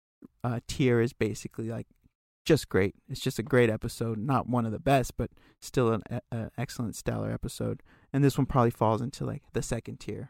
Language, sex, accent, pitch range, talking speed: English, male, American, 115-140 Hz, 190 wpm